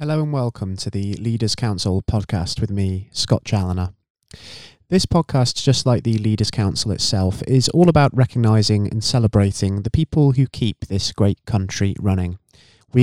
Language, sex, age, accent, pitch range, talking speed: English, male, 20-39, British, 100-125 Hz, 160 wpm